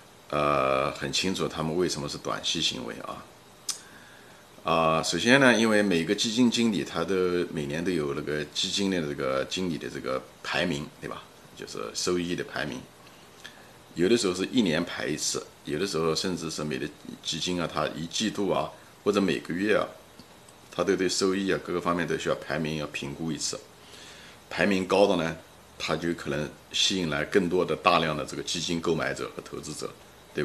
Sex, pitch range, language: male, 70-90 Hz, Chinese